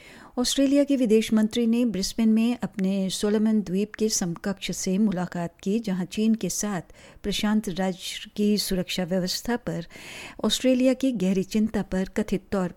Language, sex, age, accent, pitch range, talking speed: English, female, 60-79, Indian, 180-220 Hz, 150 wpm